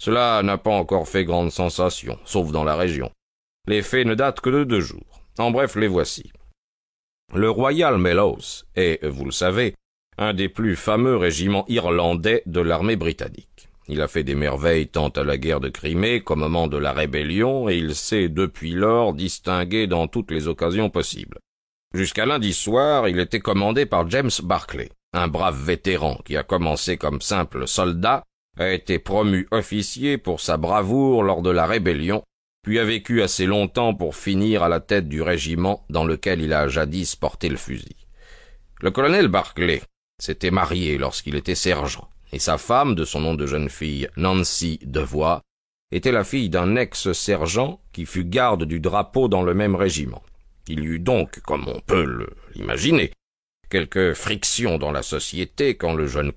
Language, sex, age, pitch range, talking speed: French, male, 50-69, 80-105 Hz, 175 wpm